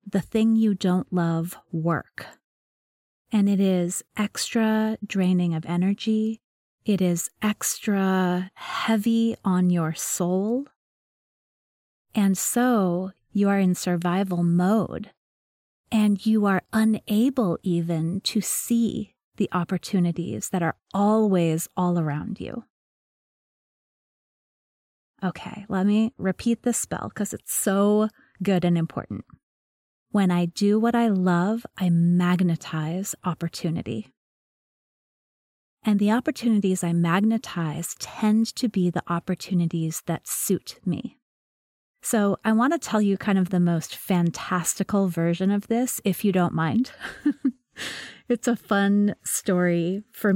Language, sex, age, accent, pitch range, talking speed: English, female, 30-49, American, 175-220 Hz, 120 wpm